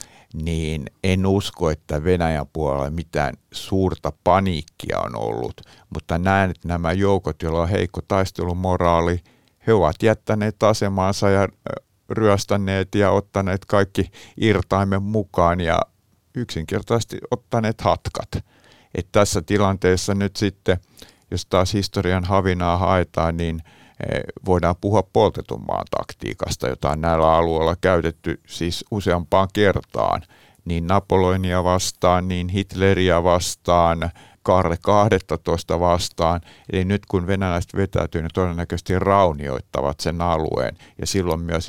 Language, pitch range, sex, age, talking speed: Finnish, 85-100 Hz, male, 50-69, 115 wpm